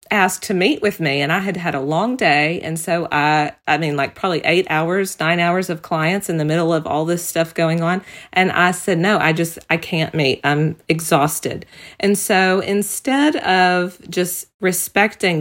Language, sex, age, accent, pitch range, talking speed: English, female, 40-59, American, 165-200 Hz, 200 wpm